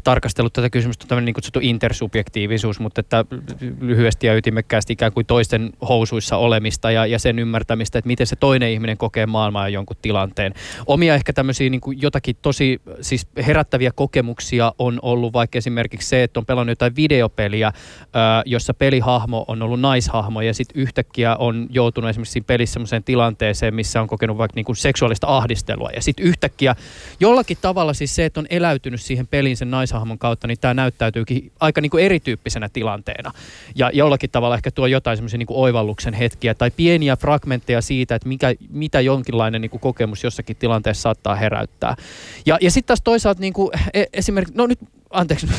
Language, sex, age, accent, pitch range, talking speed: Finnish, male, 20-39, native, 115-140 Hz, 170 wpm